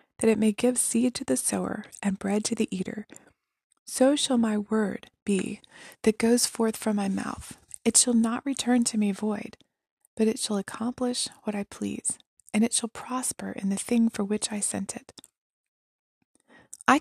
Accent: American